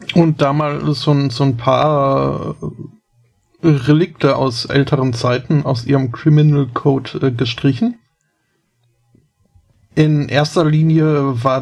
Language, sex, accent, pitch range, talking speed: German, male, German, 125-160 Hz, 105 wpm